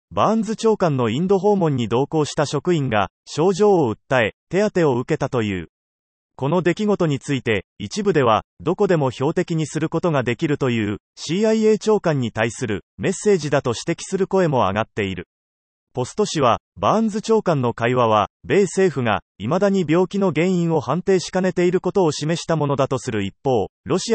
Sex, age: male, 30-49